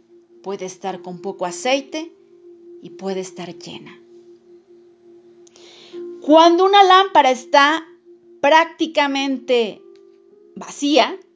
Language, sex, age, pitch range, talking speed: Spanish, female, 40-59, 205-345 Hz, 80 wpm